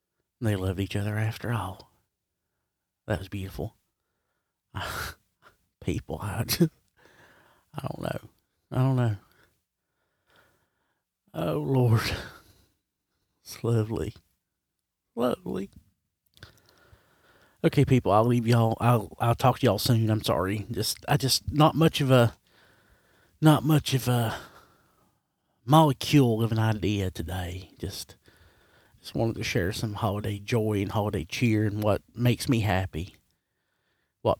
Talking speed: 120 wpm